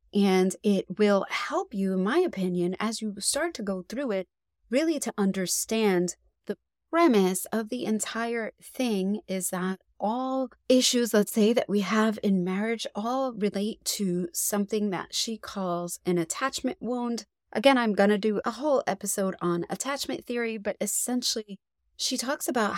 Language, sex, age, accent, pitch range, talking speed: English, female, 30-49, American, 190-240 Hz, 160 wpm